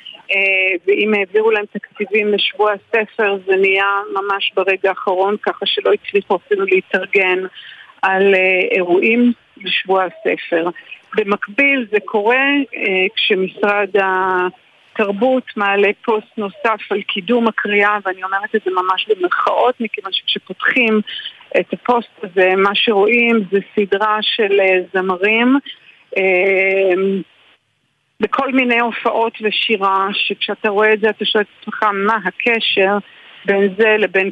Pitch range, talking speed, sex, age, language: 195-225 Hz, 110 wpm, female, 50-69, Hebrew